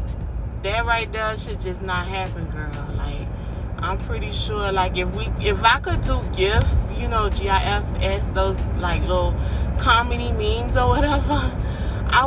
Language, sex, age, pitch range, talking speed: English, female, 20-39, 95-110 Hz, 150 wpm